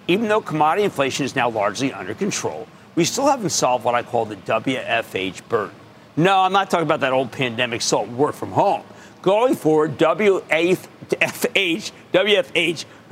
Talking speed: 155 wpm